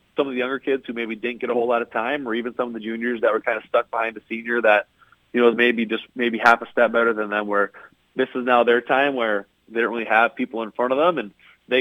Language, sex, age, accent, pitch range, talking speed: English, male, 30-49, American, 110-120 Hz, 300 wpm